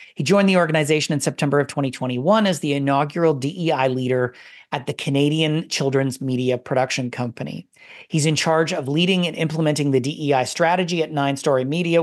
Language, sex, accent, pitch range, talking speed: English, male, American, 130-165 Hz, 170 wpm